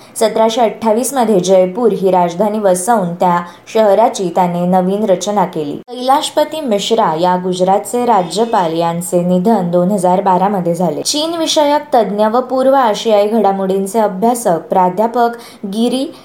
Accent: native